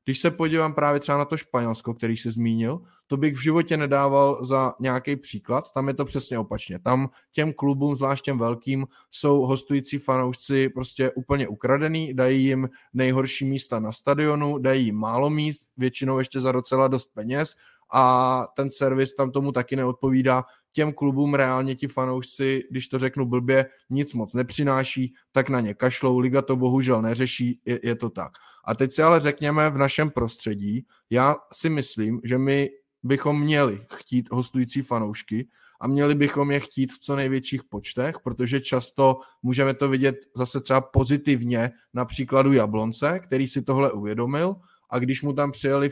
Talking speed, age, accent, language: 170 wpm, 20-39, native, Czech